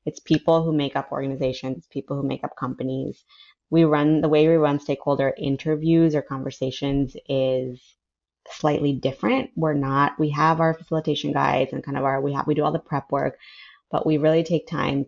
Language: English